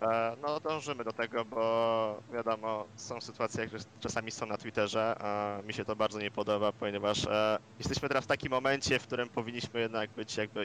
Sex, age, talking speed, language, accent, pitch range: male, 20-39, 175 wpm, Polish, native, 105-115 Hz